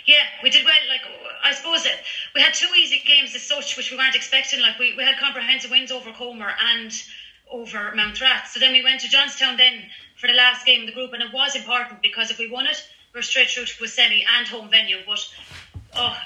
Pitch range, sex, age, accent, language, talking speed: 220-255 Hz, female, 30-49, Irish, English, 245 wpm